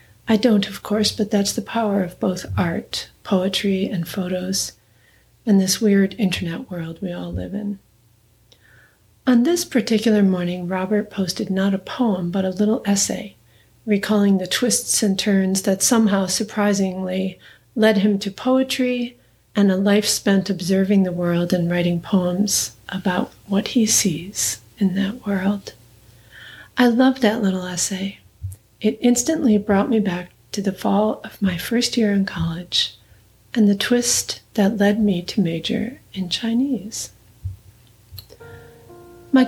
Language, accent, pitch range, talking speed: English, American, 180-215 Hz, 145 wpm